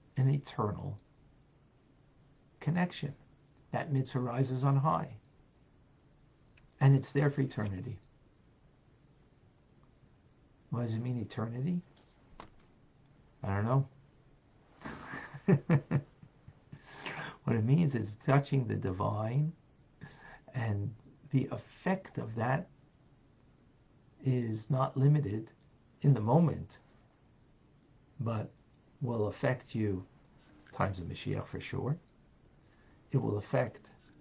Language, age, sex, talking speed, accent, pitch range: English, 50-69, male, 90 wpm, American, 120-145 Hz